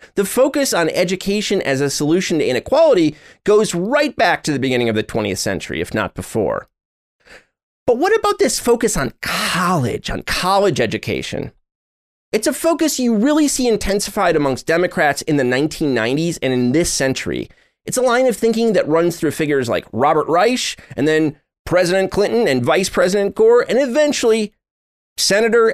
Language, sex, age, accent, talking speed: English, male, 30-49, American, 165 wpm